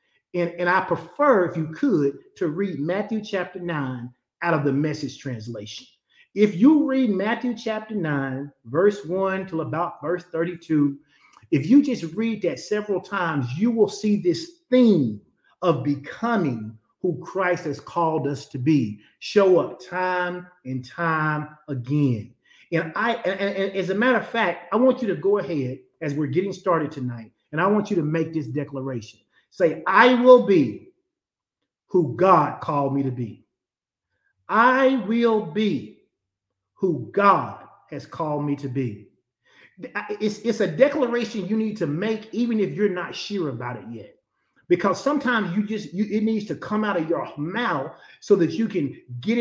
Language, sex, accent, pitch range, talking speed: English, male, American, 145-210 Hz, 170 wpm